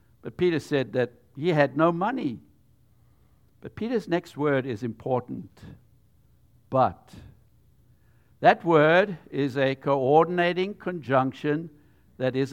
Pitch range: 115-160 Hz